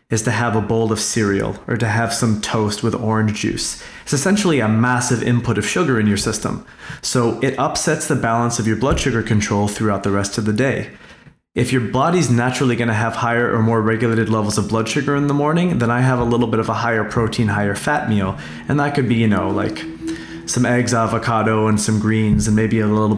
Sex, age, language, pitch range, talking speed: male, 20-39, English, 110-125 Hz, 230 wpm